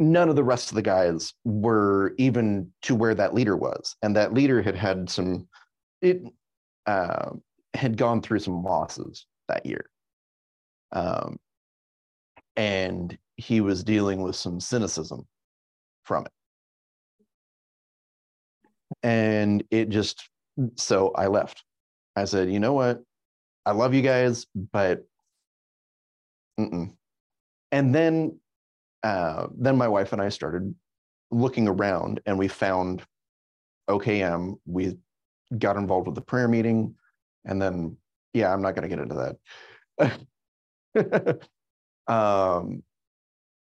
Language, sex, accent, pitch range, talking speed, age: English, male, American, 95-125 Hz, 120 wpm, 30-49